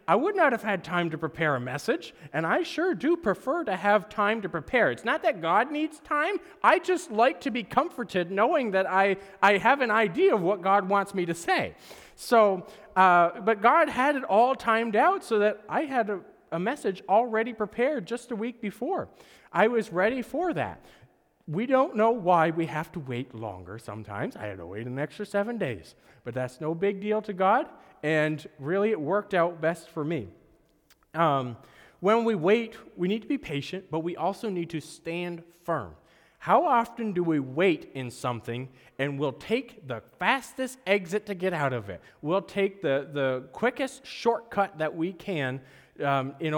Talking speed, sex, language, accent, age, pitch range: 195 wpm, male, English, American, 40-59, 150-225 Hz